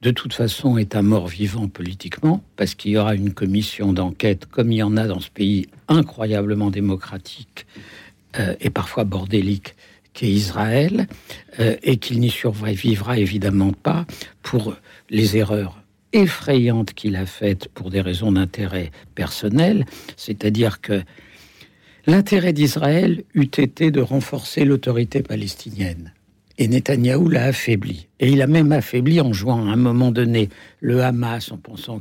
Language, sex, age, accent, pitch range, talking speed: French, male, 60-79, French, 100-130 Hz, 150 wpm